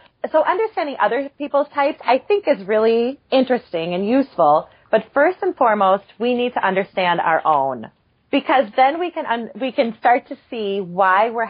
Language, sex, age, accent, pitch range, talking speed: English, female, 30-49, American, 185-265 Hz, 175 wpm